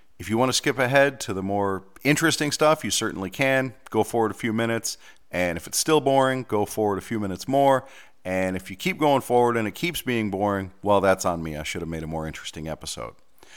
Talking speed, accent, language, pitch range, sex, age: 235 wpm, American, English, 85-120 Hz, male, 40-59